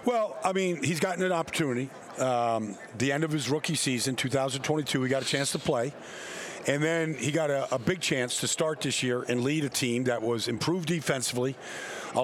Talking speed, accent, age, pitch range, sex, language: 205 wpm, American, 50-69, 140-190 Hz, male, English